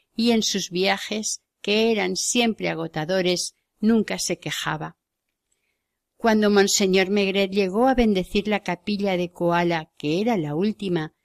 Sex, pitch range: female, 170-215 Hz